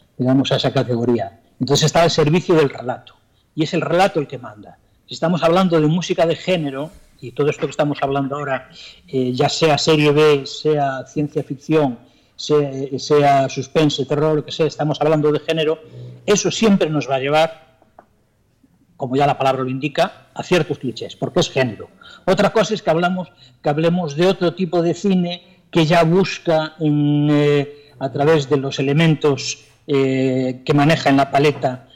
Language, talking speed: Spanish, 175 wpm